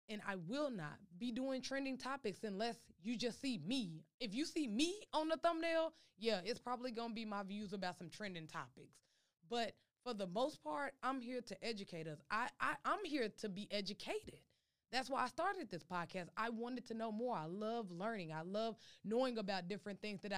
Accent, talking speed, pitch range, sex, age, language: American, 210 wpm, 180-255 Hz, female, 20-39, English